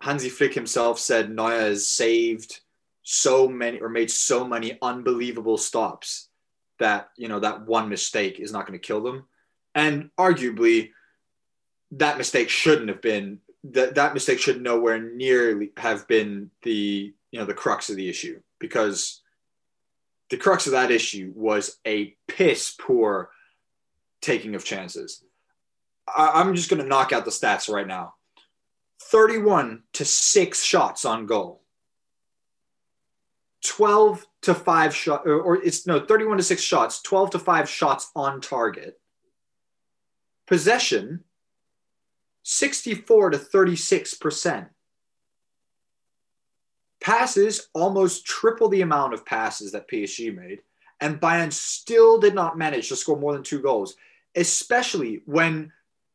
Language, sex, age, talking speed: English, male, 20-39, 135 wpm